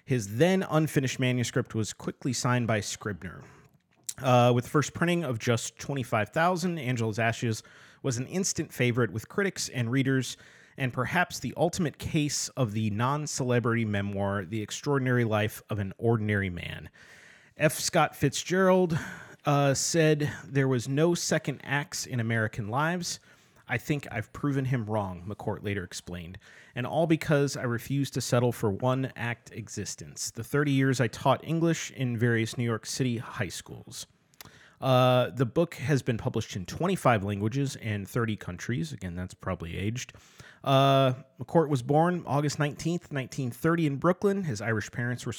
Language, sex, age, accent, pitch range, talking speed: English, male, 30-49, American, 115-150 Hz, 155 wpm